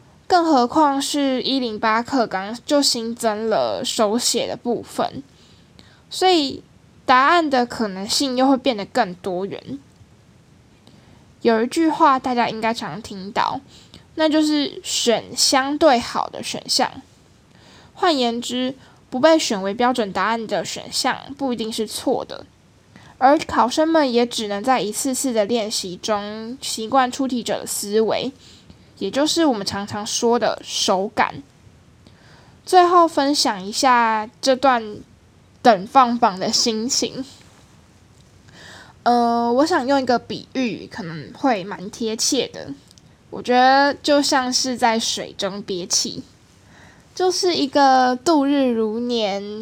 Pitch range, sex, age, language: 220-275 Hz, female, 10-29, Chinese